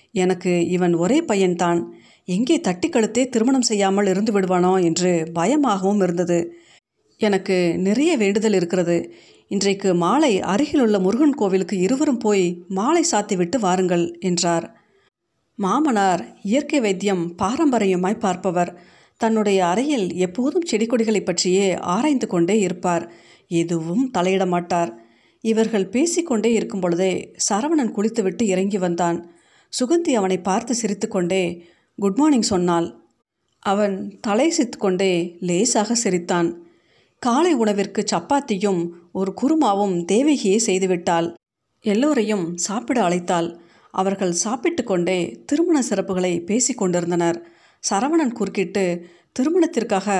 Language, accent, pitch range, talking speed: Tamil, native, 180-230 Hz, 100 wpm